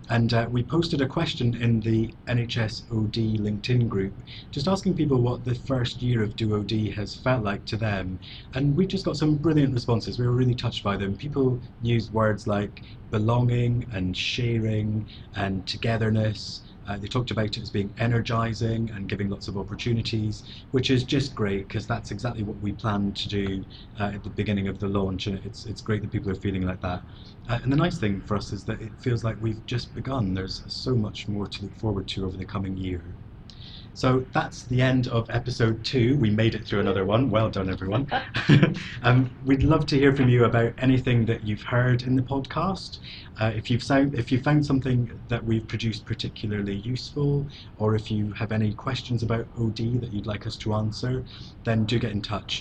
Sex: male